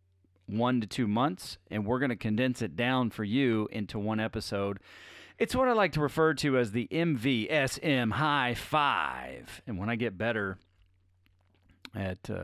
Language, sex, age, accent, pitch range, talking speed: English, male, 40-59, American, 95-125 Hz, 165 wpm